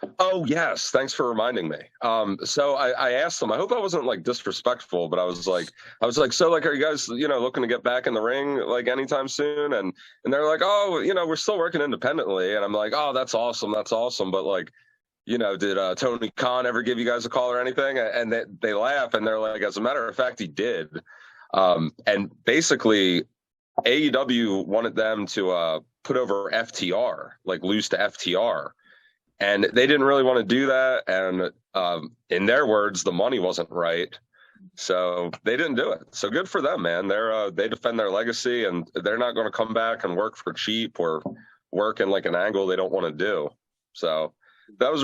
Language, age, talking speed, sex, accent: English, 30-49, 220 wpm, male, American